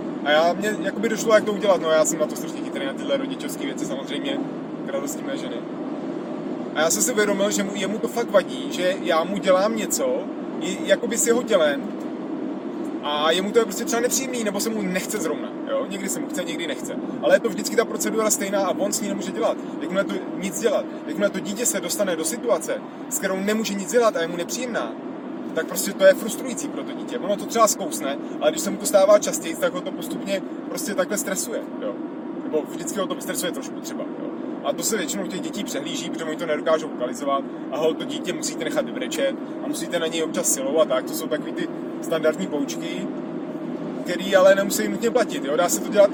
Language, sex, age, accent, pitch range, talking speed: Czech, male, 30-49, native, 235-305 Hz, 220 wpm